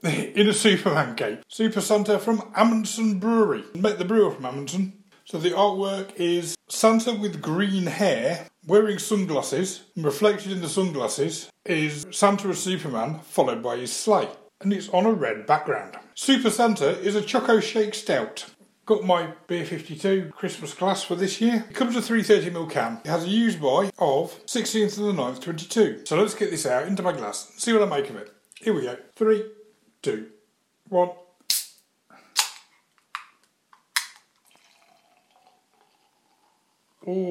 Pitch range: 165-215 Hz